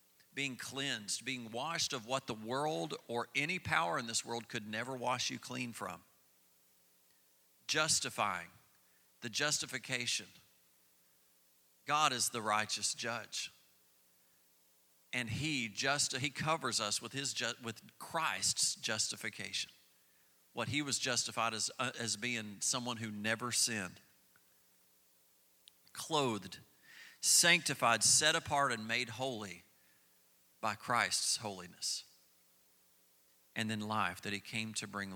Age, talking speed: 50-69, 120 wpm